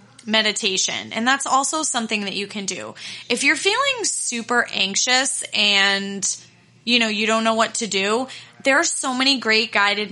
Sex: female